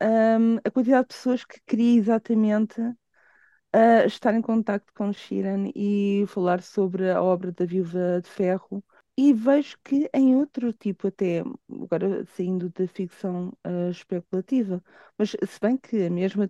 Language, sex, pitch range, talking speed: Portuguese, female, 185-230 Hz, 155 wpm